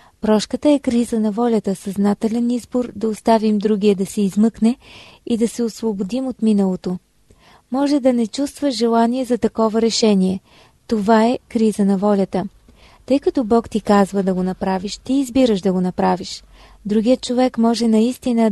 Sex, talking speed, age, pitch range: female, 160 wpm, 20-39, 205-235 Hz